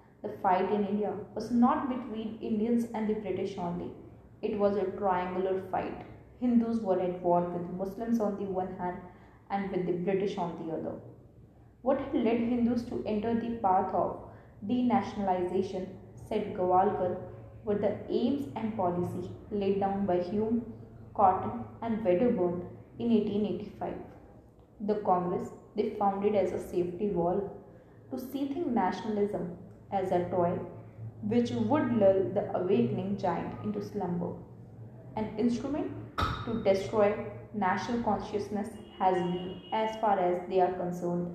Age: 20-39